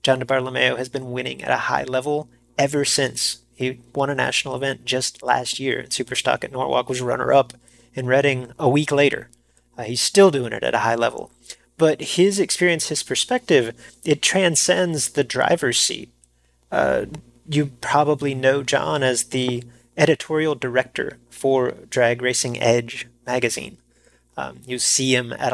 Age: 30-49